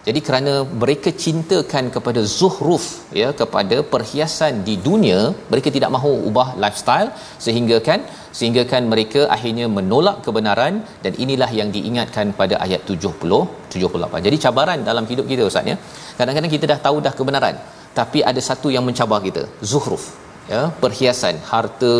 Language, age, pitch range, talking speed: Malayalam, 40-59, 120-145 Hz, 145 wpm